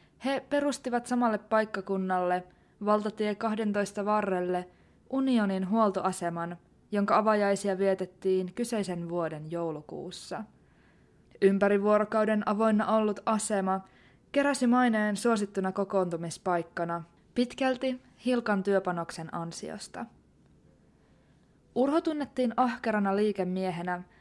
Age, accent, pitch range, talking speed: 20-39, native, 185-235 Hz, 75 wpm